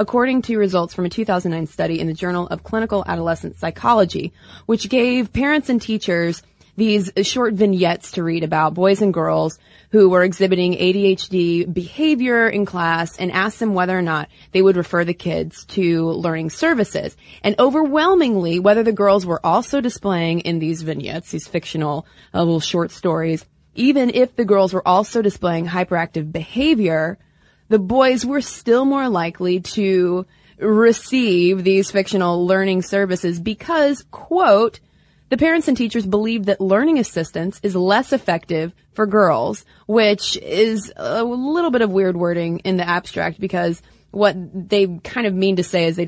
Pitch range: 170-220 Hz